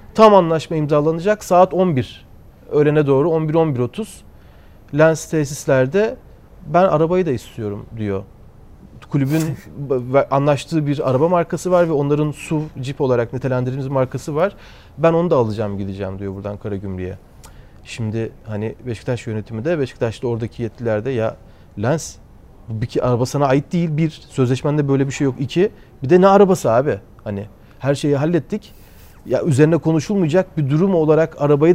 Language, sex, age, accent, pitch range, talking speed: Turkish, male, 40-59, native, 120-170 Hz, 145 wpm